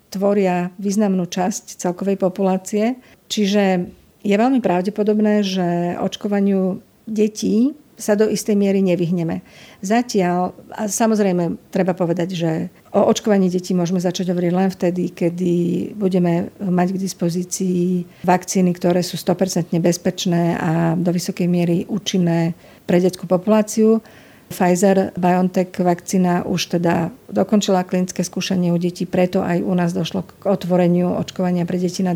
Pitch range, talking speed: 175-200 Hz, 130 wpm